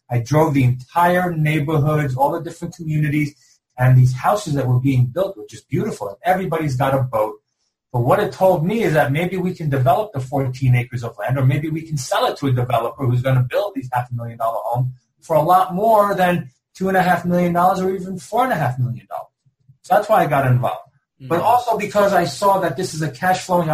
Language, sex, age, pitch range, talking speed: English, male, 30-49, 130-175 Hz, 205 wpm